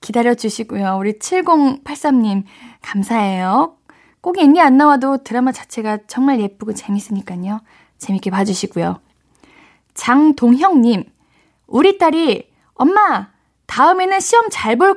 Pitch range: 205-285 Hz